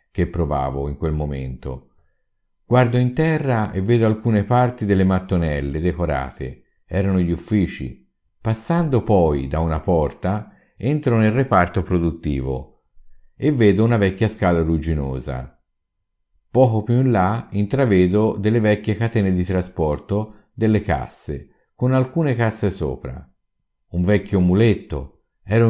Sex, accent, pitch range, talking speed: male, native, 80-115 Hz, 125 wpm